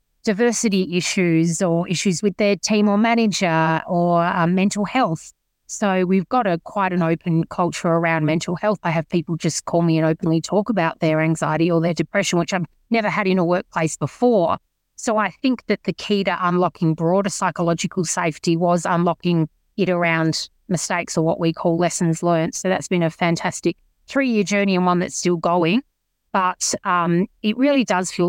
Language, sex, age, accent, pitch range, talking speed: English, female, 30-49, Australian, 170-205 Hz, 185 wpm